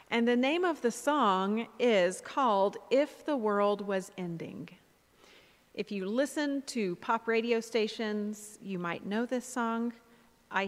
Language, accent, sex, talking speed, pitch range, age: English, American, female, 145 wpm, 190-245 Hz, 40-59